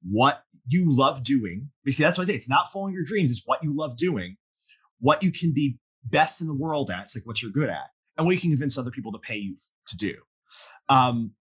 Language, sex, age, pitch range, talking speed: English, male, 30-49, 115-155 Hz, 250 wpm